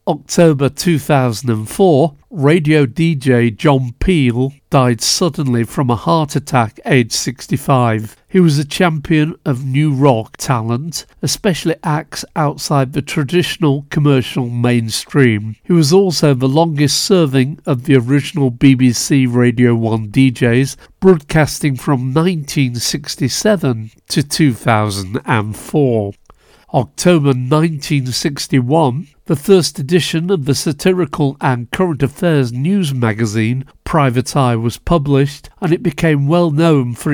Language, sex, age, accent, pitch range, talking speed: English, male, 50-69, British, 125-160 Hz, 115 wpm